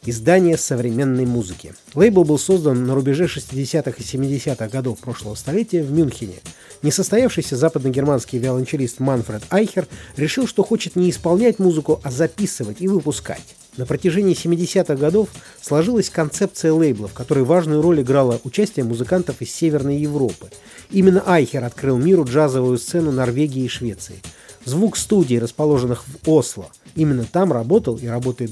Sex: male